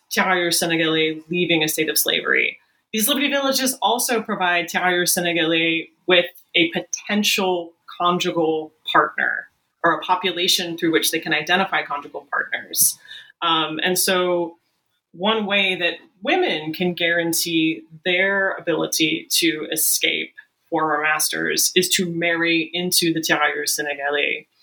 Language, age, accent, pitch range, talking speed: English, 30-49, American, 165-205 Hz, 125 wpm